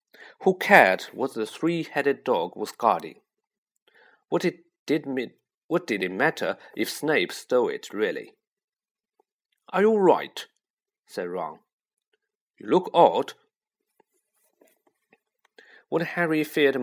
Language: Chinese